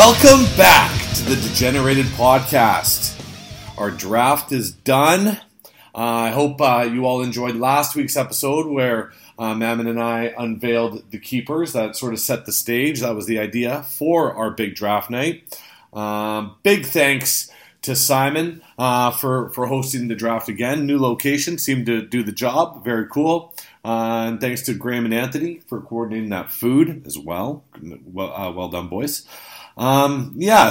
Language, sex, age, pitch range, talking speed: English, male, 40-59, 110-145 Hz, 165 wpm